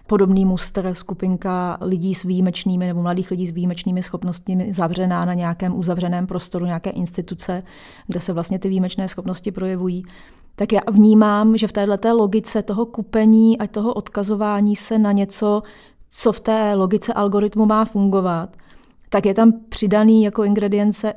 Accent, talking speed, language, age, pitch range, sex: native, 155 wpm, Czech, 30-49, 185-210 Hz, female